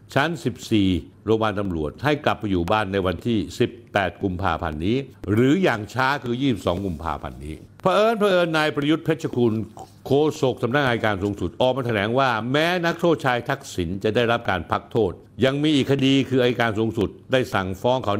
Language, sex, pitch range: Thai, male, 90-125 Hz